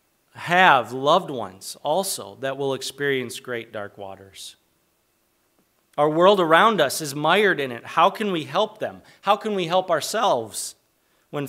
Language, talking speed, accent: English, 150 wpm, American